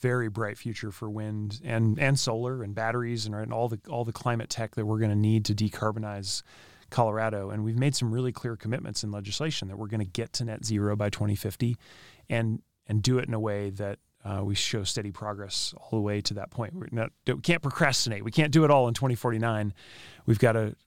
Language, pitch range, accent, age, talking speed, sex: English, 105-125 Hz, American, 30-49, 215 wpm, male